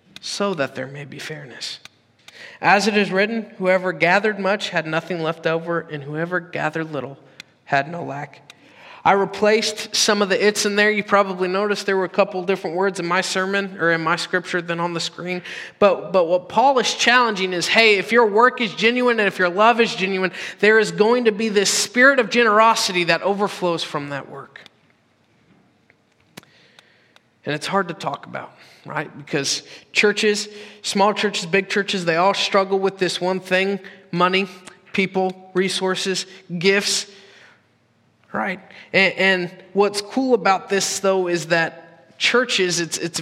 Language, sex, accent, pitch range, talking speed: English, male, American, 170-210 Hz, 165 wpm